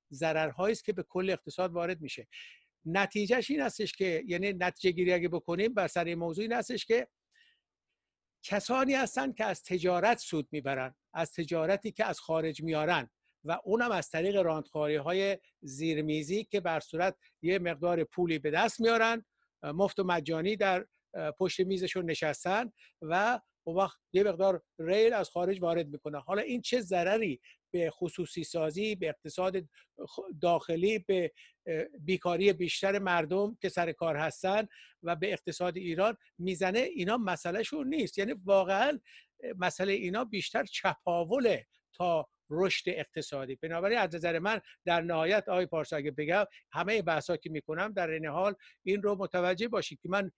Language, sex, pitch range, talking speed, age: Persian, male, 165-205 Hz, 145 wpm, 60-79